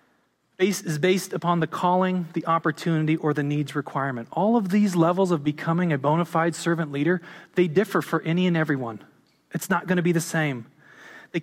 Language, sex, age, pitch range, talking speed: English, male, 30-49, 140-180 Hz, 190 wpm